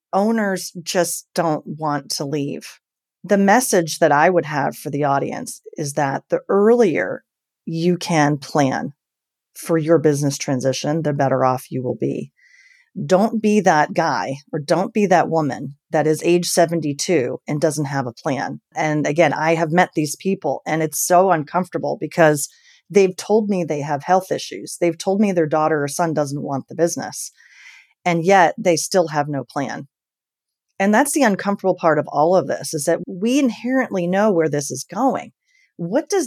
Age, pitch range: 30-49, 150-200 Hz